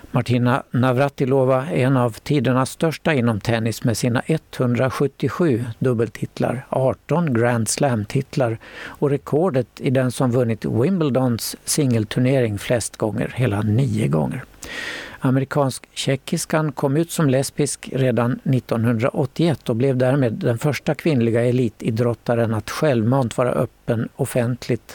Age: 60-79